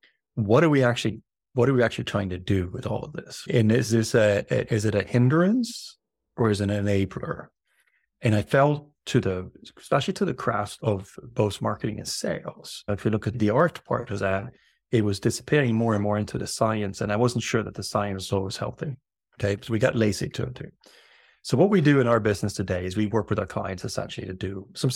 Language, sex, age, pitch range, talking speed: English, male, 30-49, 100-125 Hz, 235 wpm